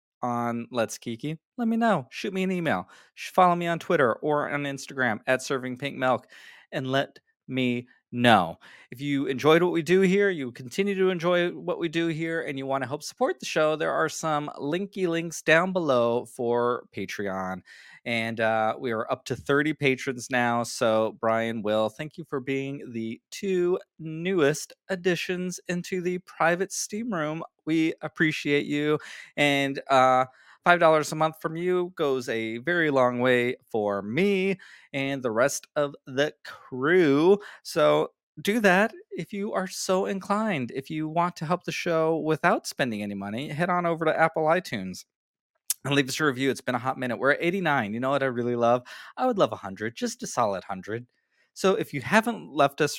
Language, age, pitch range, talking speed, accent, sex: English, 20-39, 120-175 Hz, 185 wpm, American, male